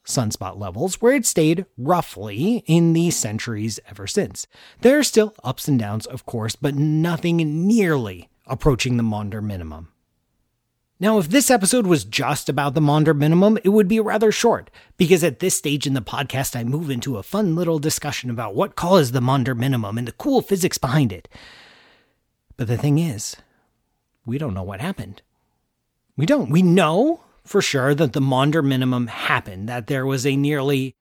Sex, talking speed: male, 180 wpm